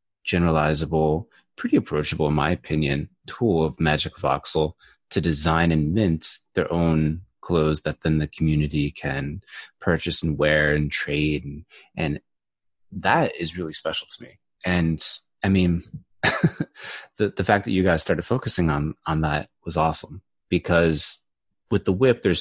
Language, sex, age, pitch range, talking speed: English, male, 30-49, 75-95 Hz, 150 wpm